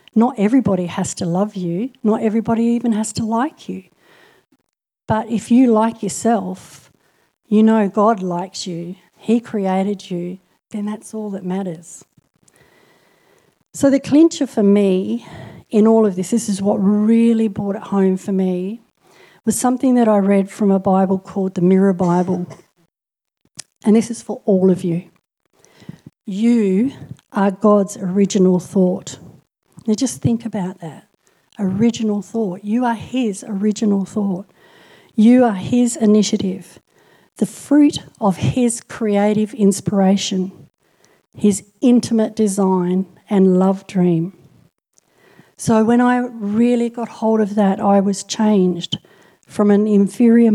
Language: English